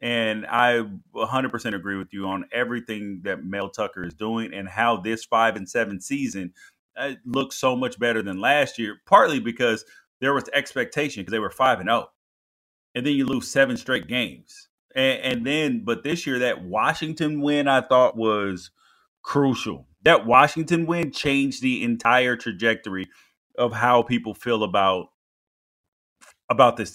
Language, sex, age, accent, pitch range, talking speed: English, male, 30-49, American, 115-145 Hz, 165 wpm